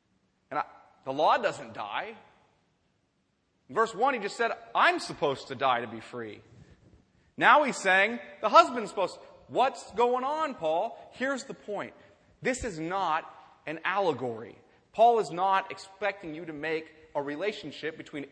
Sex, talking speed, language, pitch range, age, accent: male, 150 wpm, English, 140-200 Hz, 30-49, American